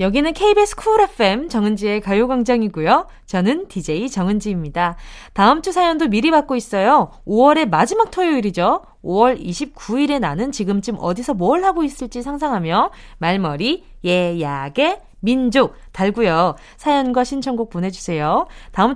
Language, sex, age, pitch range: Korean, female, 20-39, 200-315 Hz